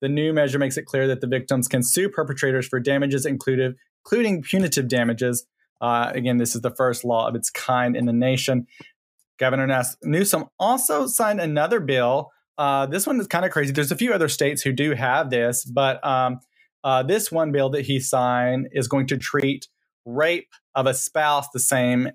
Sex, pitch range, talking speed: male, 125-145 Hz, 195 wpm